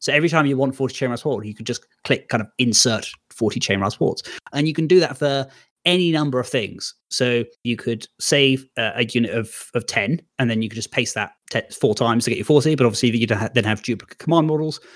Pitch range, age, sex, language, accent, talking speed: 115-145 Hz, 30-49, male, English, British, 235 wpm